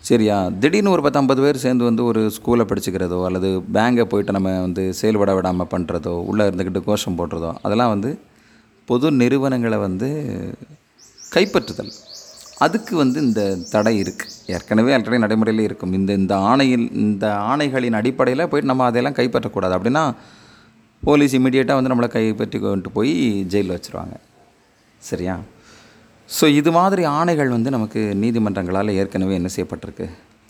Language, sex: Tamil, male